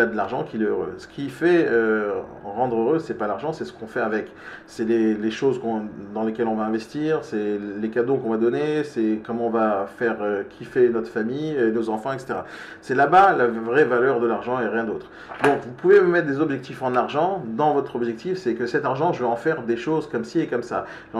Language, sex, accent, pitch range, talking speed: French, male, French, 115-150 Hz, 245 wpm